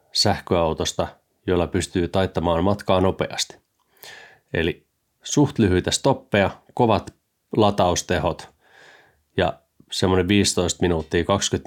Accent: native